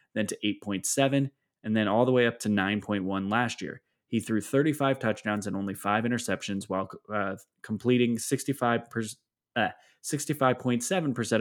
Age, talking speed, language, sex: 20-39, 130 wpm, English, male